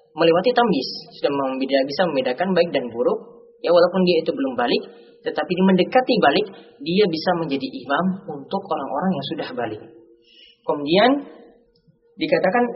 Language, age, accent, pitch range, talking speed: Indonesian, 20-39, native, 140-215 Hz, 140 wpm